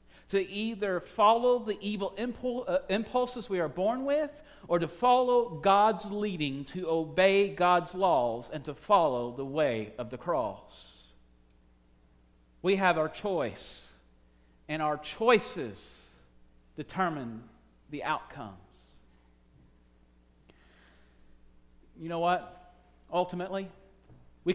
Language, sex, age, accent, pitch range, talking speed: English, male, 40-59, American, 140-190 Hz, 105 wpm